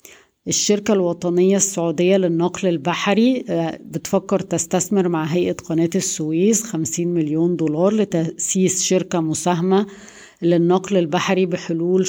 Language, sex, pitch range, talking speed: Arabic, female, 165-185 Hz, 100 wpm